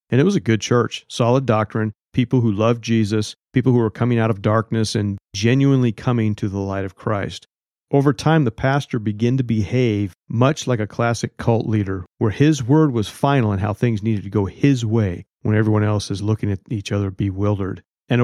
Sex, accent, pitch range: male, American, 105-125 Hz